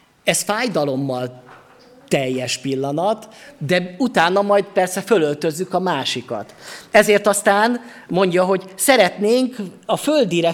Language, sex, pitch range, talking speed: Hungarian, male, 150-200 Hz, 100 wpm